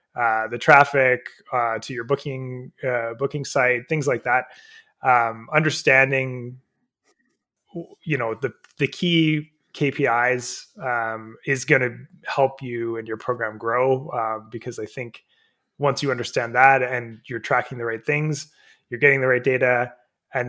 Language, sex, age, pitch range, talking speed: English, male, 20-39, 120-145 Hz, 150 wpm